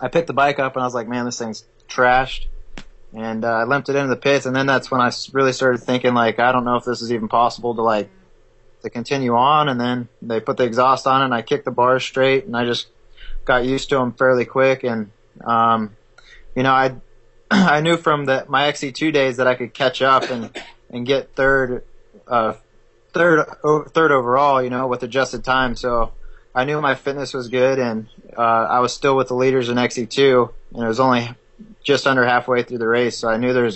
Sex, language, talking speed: male, English, 230 wpm